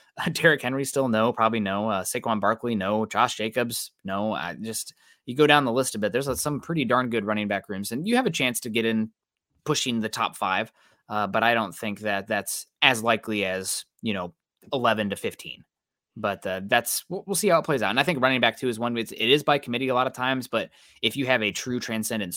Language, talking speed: English, 245 wpm